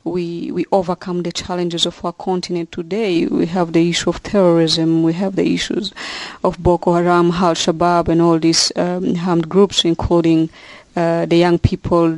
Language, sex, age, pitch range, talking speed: English, female, 30-49, 170-185 Hz, 175 wpm